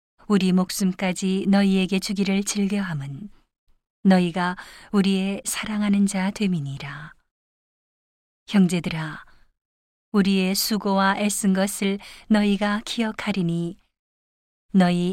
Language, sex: Korean, female